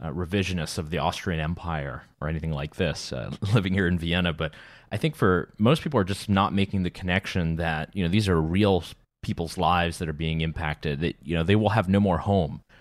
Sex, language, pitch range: male, English, 85-105 Hz